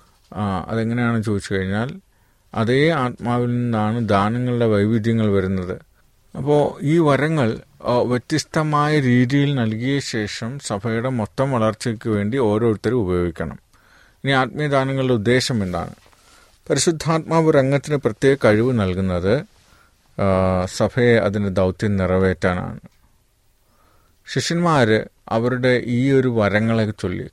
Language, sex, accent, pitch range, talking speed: Malayalam, male, native, 100-130 Hz, 95 wpm